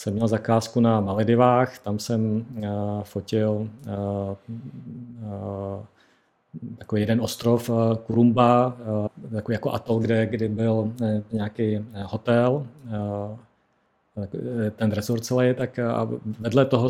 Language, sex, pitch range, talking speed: Czech, male, 105-115 Hz, 130 wpm